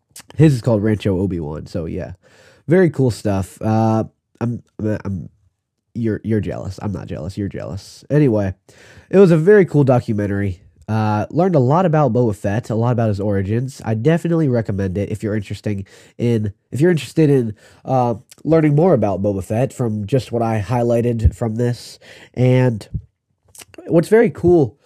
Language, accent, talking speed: English, American, 165 wpm